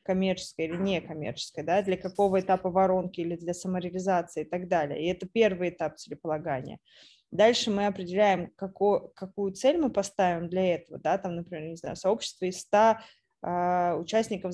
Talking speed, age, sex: 155 wpm, 20-39, female